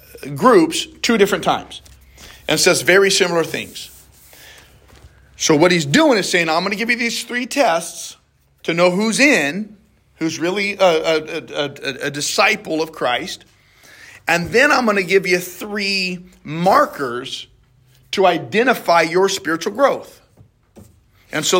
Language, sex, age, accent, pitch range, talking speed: English, male, 40-59, American, 145-195 Hz, 145 wpm